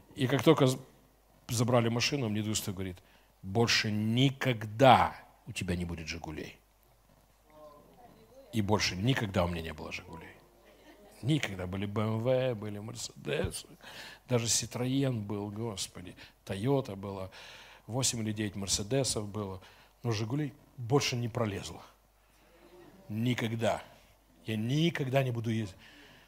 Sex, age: male, 60-79